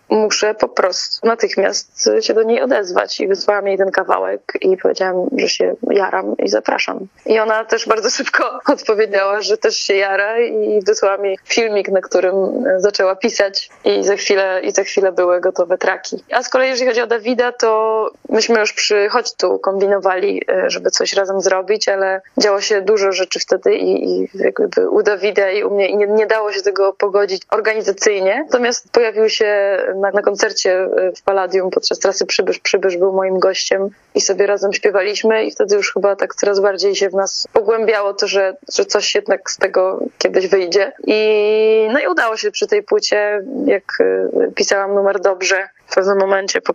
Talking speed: 180 wpm